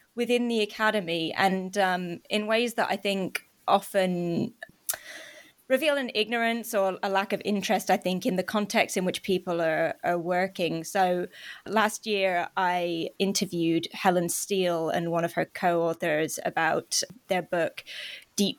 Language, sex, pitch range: English, female, 175-210 Hz